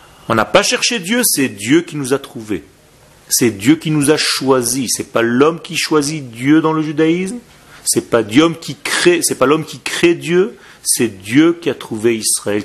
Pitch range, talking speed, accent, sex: 145-240 Hz, 205 wpm, French, male